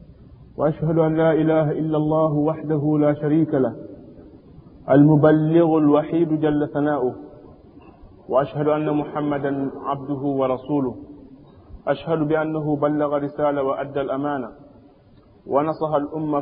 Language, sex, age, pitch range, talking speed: French, male, 30-49, 145-160 Hz, 100 wpm